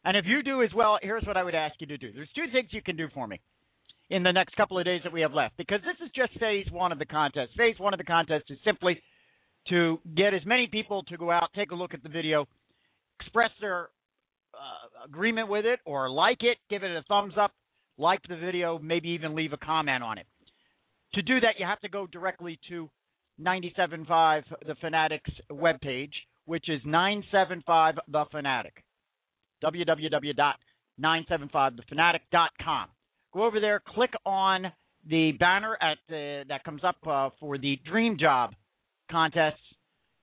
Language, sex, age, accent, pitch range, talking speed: English, male, 50-69, American, 155-200 Hz, 185 wpm